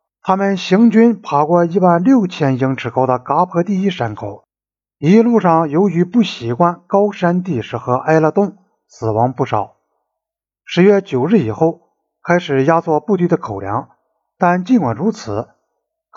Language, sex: Chinese, male